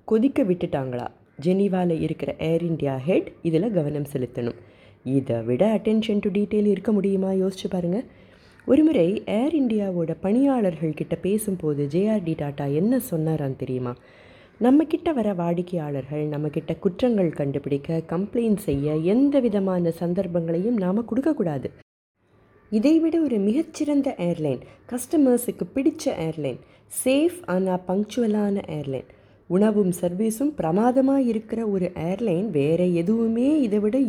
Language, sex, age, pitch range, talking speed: Tamil, female, 20-39, 160-220 Hz, 115 wpm